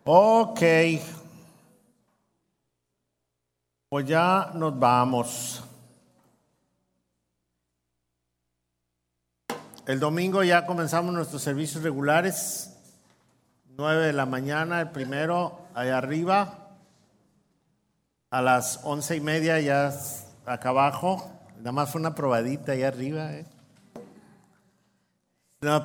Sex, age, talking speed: male, 50-69, 85 wpm